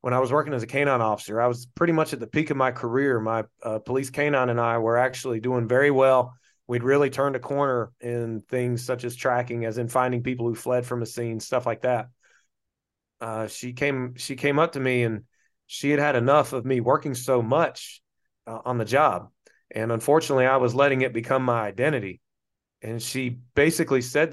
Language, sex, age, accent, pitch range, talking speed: English, male, 30-49, American, 120-145 Hz, 210 wpm